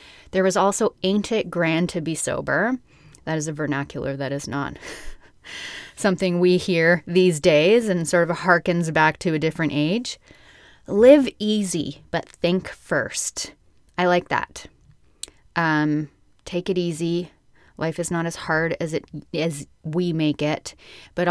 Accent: American